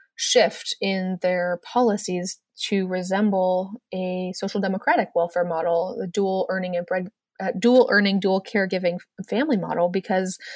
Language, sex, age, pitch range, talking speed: English, female, 20-39, 185-215 Hz, 135 wpm